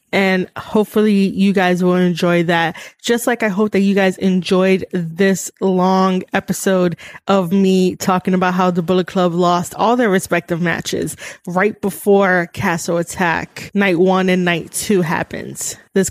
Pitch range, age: 185-210 Hz, 20-39